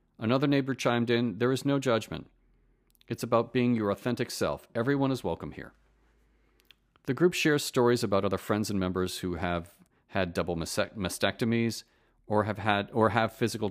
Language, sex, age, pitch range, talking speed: English, male, 40-59, 100-130 Hz, 165 wpm